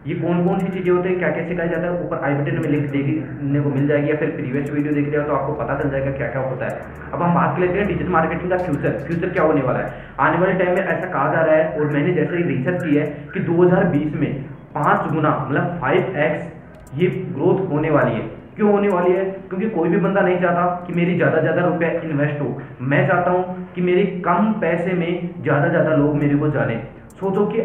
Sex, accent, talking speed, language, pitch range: male, native, 120 wpm, Hindi, 150-180 Hz